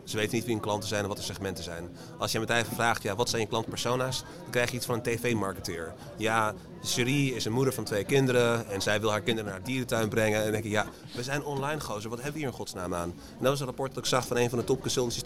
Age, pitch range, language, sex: 30-49, 100-120 Hz, Dutch, male